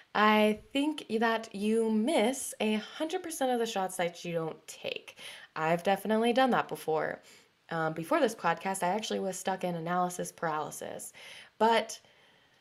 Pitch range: 185-230 Hz